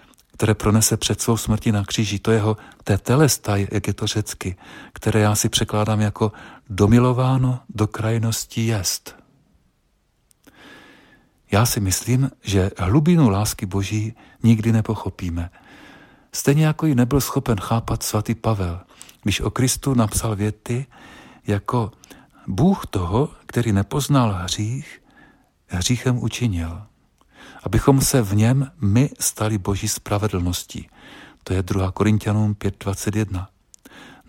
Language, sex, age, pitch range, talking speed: Czech, male, 50-69, 100-125 Hz, 115 wpm